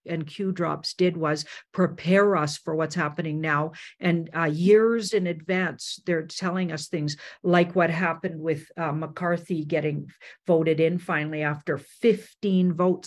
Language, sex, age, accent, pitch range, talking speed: English, female, 50-69, American, 160-185 Hz, 150 wpm